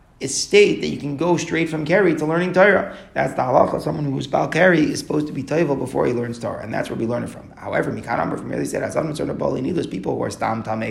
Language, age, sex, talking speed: English, 30-49, male, 265 wpm